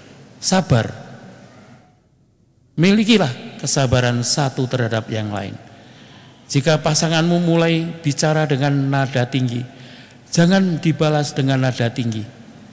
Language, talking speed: Indonesian, 90 wpm